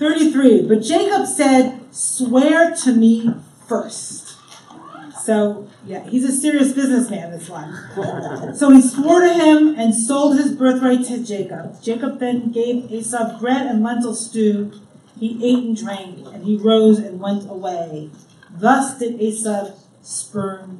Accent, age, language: American, 40-59, English